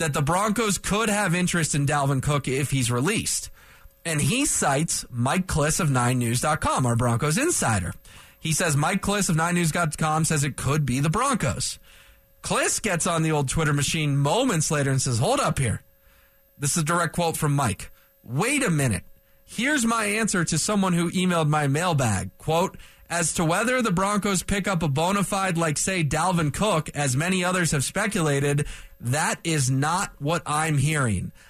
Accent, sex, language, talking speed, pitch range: American, male, English, 175 wpm, 130-170 Hz